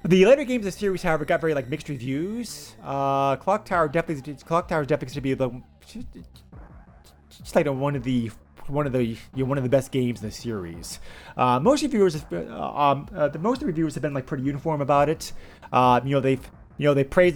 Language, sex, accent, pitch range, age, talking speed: English, male, American, 115-150 Hz, 30-49, 225 wpm